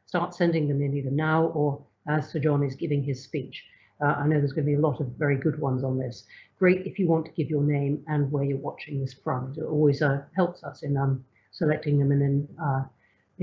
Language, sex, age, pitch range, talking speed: English, female, 50-69, 145-170 Hz, 250 wpm